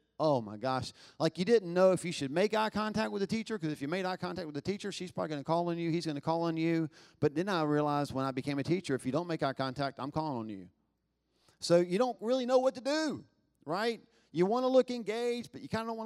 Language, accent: English, American